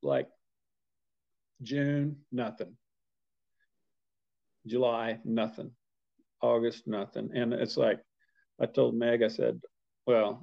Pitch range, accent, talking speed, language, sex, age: 115-140 Hz, American, 90 wpm, English, male, 50-69